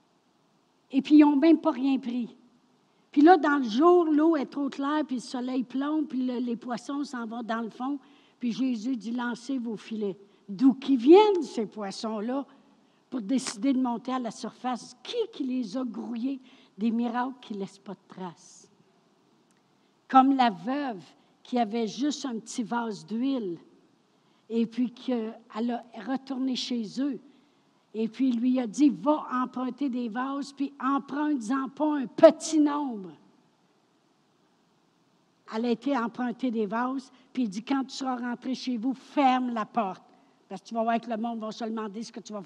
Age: 60-79